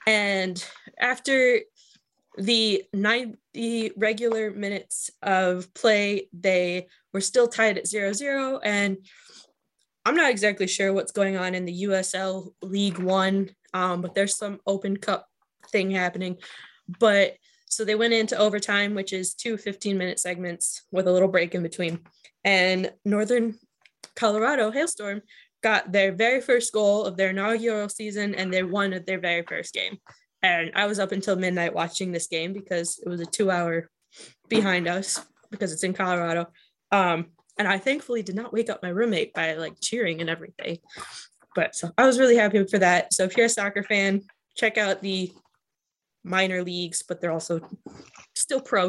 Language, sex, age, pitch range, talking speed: English, female, 10-29, 180-215 Hz, 160 wpm